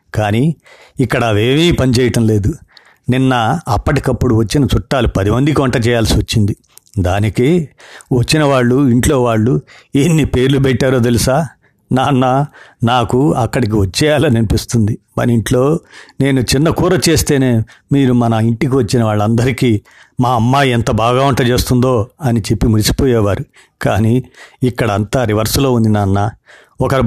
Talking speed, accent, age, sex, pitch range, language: 120 wpm, native, 50-69, male, 110-130 Hz, Telugu